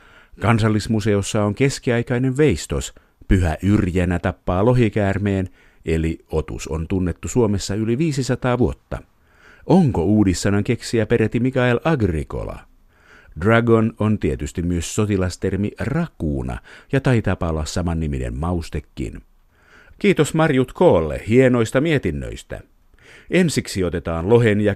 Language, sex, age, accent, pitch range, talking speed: Finnish, male, 50-69, native, 90-120 Hz, 100 wpm